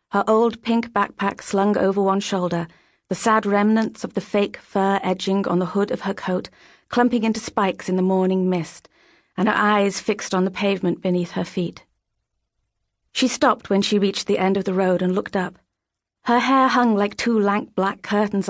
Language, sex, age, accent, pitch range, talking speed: English, female, 40-59, British, 180-210 Hz, 195 wpm